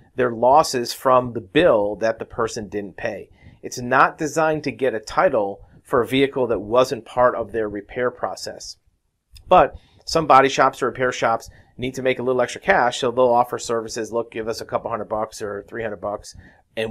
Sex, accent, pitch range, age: male, American, 110-130 Hz, 40-59